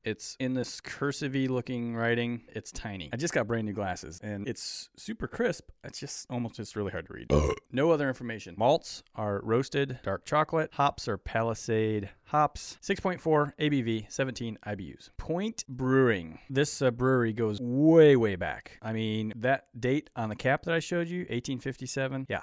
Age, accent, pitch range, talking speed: 30-49, American, 105-135 Hz, 170 wpm